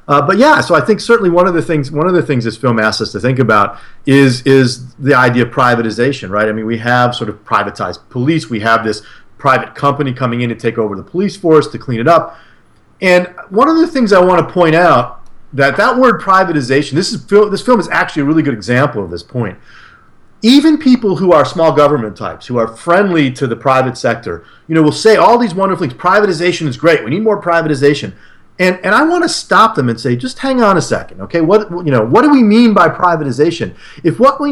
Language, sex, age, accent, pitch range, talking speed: English, male, 40-59, American, 125-185 Hz, 240 wpm